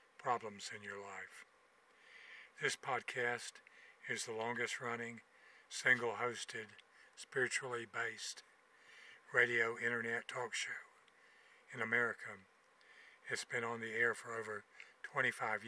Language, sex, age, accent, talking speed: English, male, 50-69, American, 95 wpm